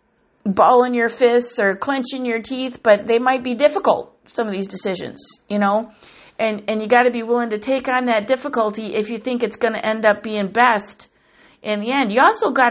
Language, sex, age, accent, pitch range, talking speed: English, female, 50-69, American, 205-250 Hz, 215 wpm